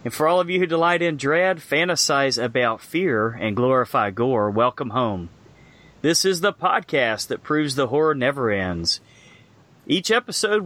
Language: English